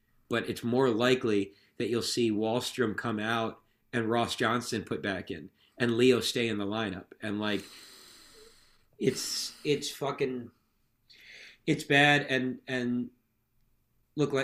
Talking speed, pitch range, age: 135 wpm, 110-130 Hz, 40-59